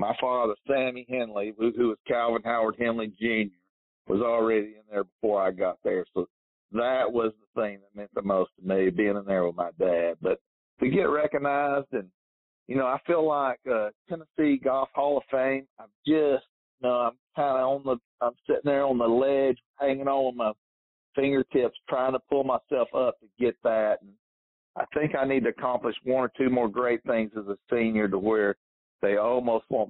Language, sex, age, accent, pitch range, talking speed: English, male, 50-69, American, 105-135 Hz, 205 wpm